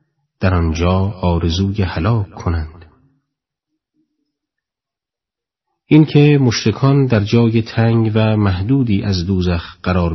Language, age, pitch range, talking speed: Persian, 40-59, 95-115 Hz, 90 wpm